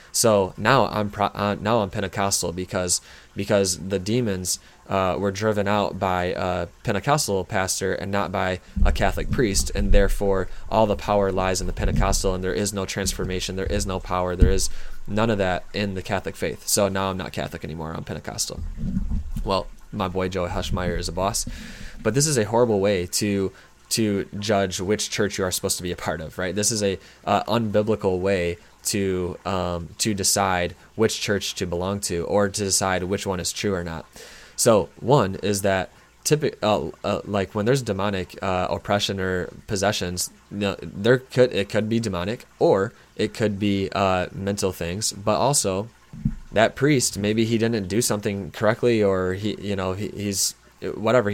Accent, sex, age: American, male, 20-39